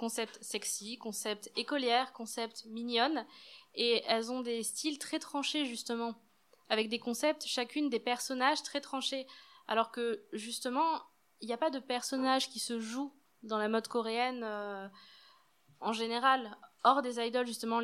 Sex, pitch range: female, 220-255 Hz